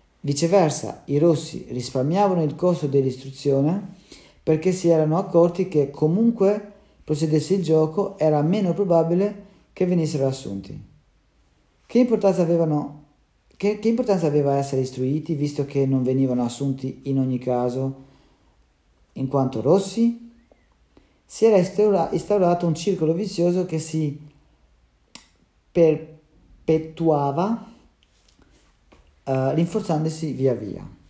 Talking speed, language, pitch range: 100 wpm, Italian, 130-175 Hz